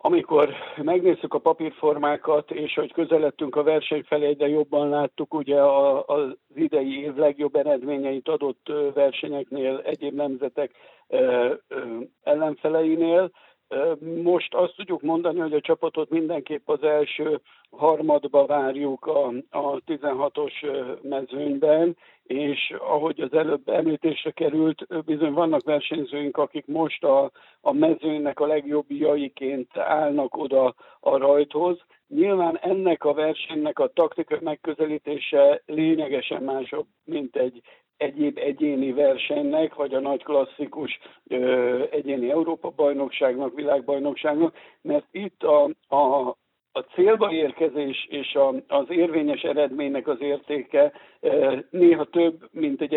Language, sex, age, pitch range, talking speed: Hungarian, male, 60-79, 140-175 Hz, 115 wpm